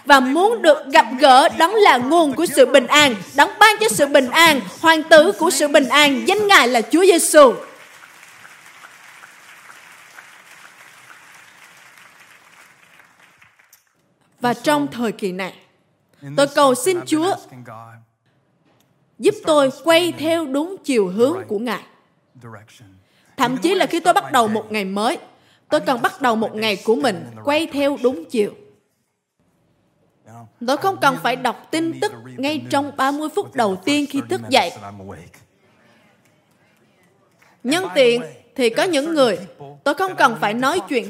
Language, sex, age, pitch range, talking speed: Vietnamese, female, 20-39, 230-325 Hz, 140 wpm